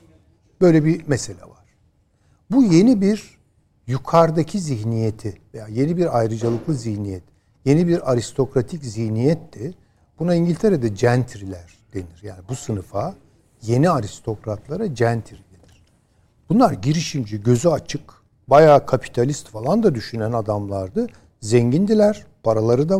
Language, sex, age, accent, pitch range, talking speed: Turkish, male, 60-79, native, 105-160 Hz, 110 wpm